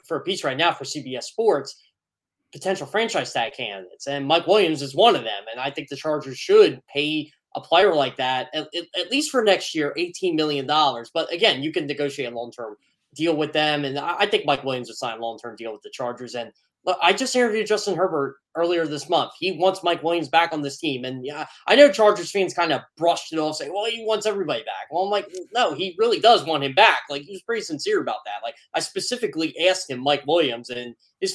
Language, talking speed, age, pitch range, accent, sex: English, 235 wpm, 10-29, 140-215 Hz, American, male